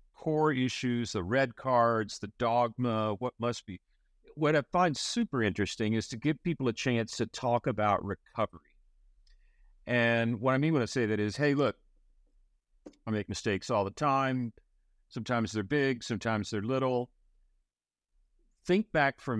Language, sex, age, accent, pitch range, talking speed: English, male, 50-69, American, 100-125 Hz, 160 wpm